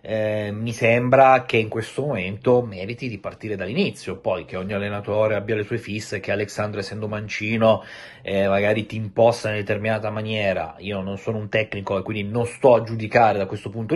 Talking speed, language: 190 wpm, Italian